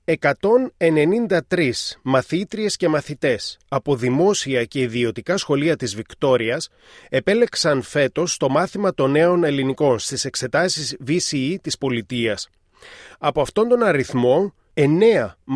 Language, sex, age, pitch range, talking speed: Greek, male, 30-49, 130-170 Hz, 110 wpm